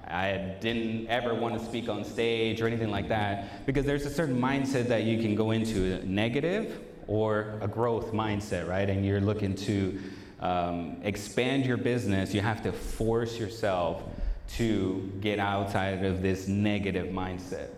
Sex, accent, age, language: male, American, 30-49, English